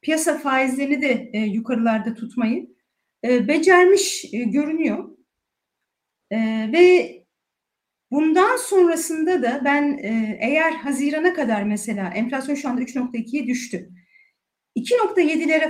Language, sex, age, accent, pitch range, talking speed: Turkish, female, 40-59, native, 230-315 Hz, 105 wpm